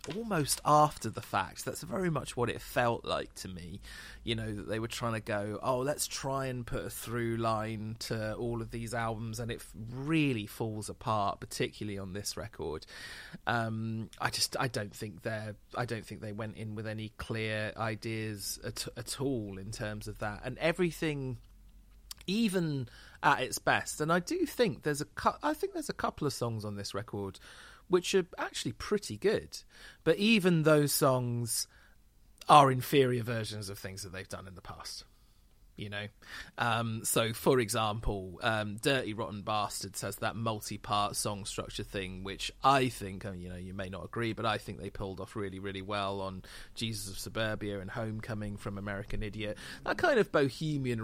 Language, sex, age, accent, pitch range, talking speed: English, male, 30-49, British, 100-125 Hz, 185 wpm